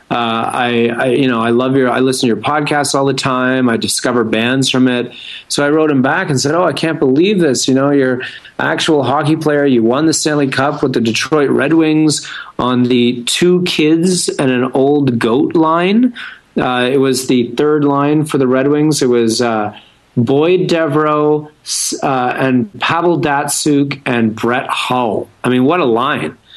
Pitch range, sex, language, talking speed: 125-150 Hz, male, English, 190 wpm